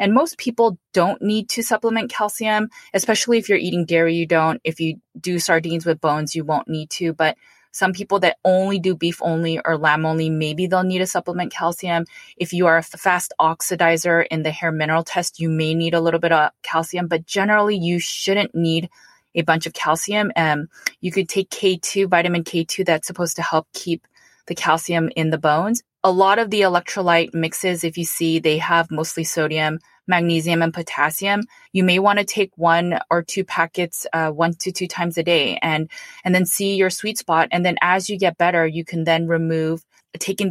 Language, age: English, 20-39